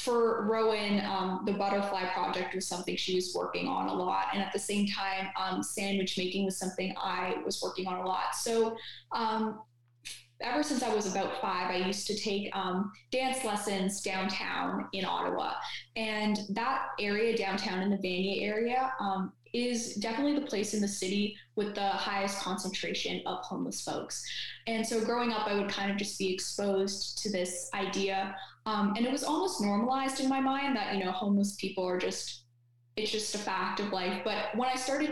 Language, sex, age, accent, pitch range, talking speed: English, female, 10-29, American, 190-220 Hz, 190 wpm